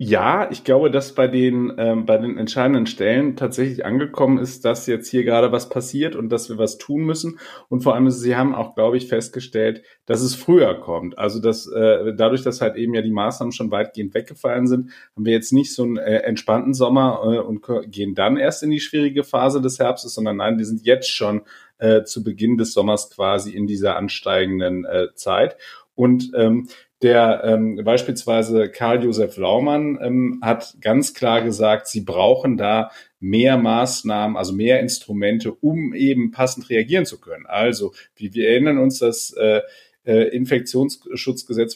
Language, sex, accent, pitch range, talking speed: German, male, German, 110-135 Hz, 180 wpm